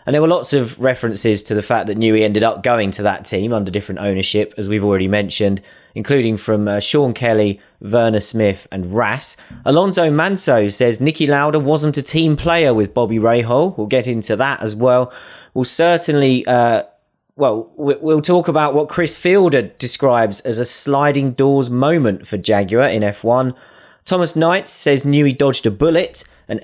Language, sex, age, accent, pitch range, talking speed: English, male, 30-49, British, 110-155 Hz, 180 wpm